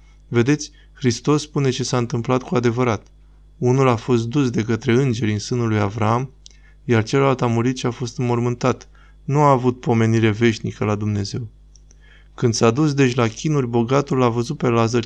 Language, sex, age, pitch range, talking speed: Romanian, male, 20-39, 110-130 Hz, 180 wpm